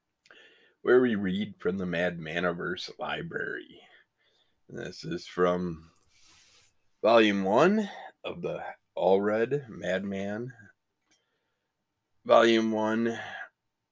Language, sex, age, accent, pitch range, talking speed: English, male, 20-39, American, 90-125 Hz, 80 wpm